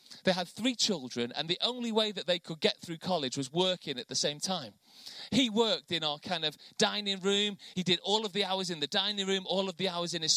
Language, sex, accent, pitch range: English, male, British, 170-225 Hz